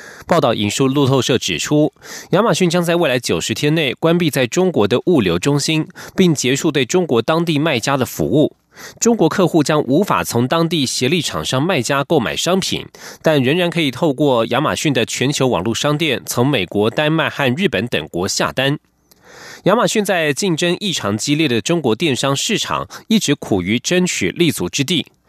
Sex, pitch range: male, 130-175 Hz